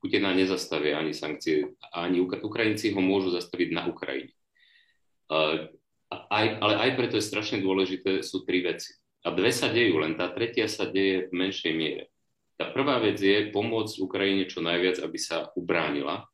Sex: male